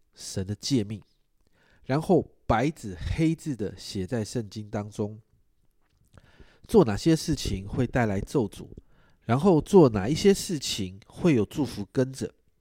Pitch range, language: 105-145 Hz, Chinese